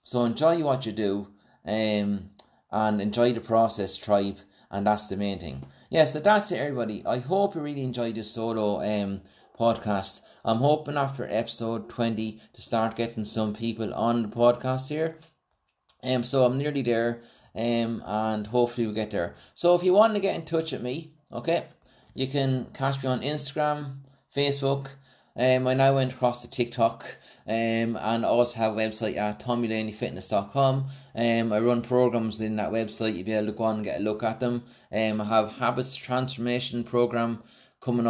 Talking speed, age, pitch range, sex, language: 180 wpm, 20-39, 110-130 Hz, male, English